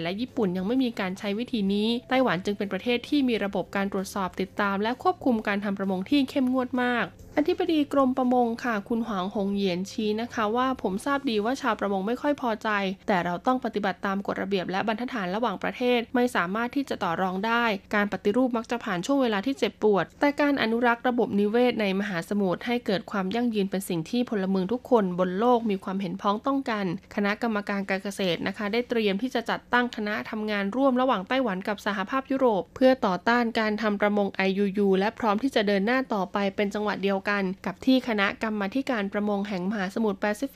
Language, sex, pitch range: Thai, female, 200-245 Hz